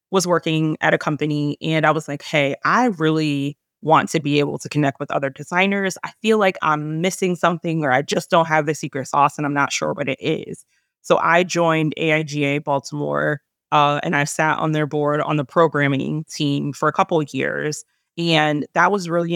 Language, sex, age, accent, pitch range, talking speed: English, female, 20-39, American, 145-165 Hz, 210 wpm